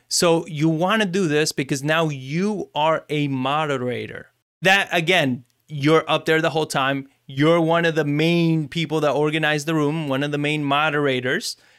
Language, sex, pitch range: English, male, 145-185 Hz